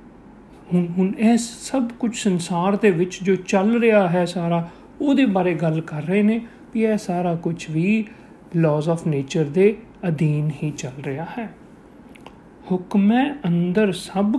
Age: 40-59